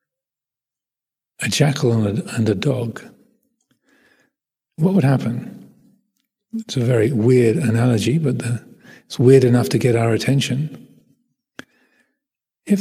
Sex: male